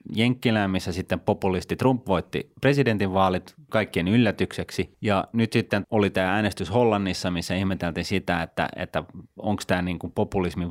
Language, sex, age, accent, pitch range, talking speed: Finnish, male, 30-49, native, 90-110 Hz, 135 wpm